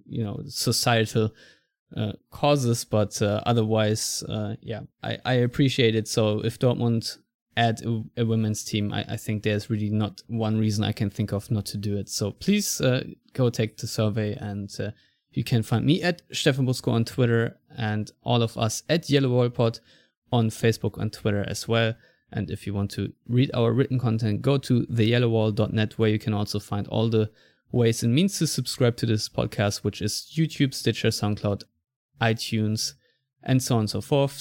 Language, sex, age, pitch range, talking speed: English, male, 20-39, 105-125 Hz, 190 wpm